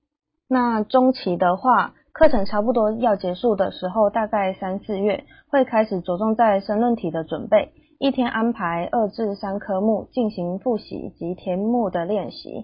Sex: female